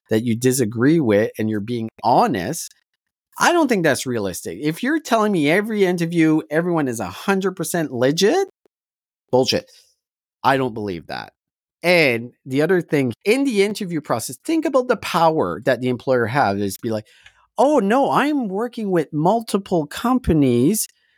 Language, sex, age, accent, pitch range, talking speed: English, male, 30-49, American, 125-205 Hz, 155 wpm